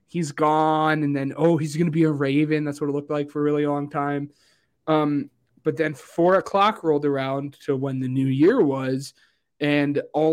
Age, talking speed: 20-39, 210 wpm